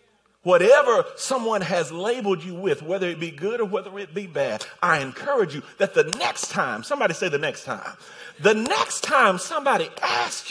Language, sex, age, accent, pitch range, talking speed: English, male, 40-59, American, 185-255 Hz, 185 wpm